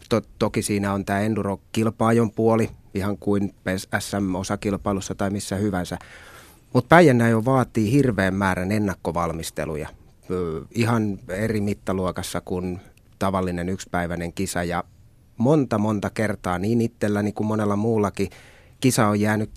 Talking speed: 120 wpm